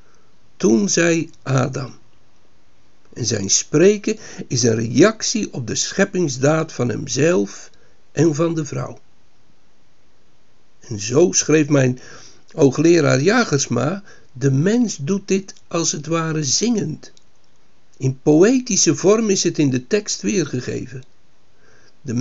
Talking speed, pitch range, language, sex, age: 115 wpm, 130-175 Hz, Dutch, male, 60-79